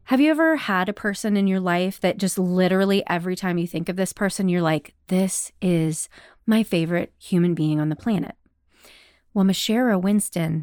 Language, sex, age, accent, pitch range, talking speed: English, female, 30-49, American, 170-210 Hz, 185 wpm